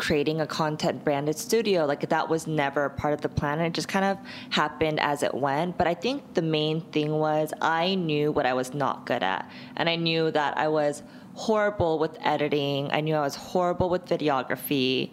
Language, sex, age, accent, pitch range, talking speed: English, female, 20-39, American, 150-185 Hz, 205 wpm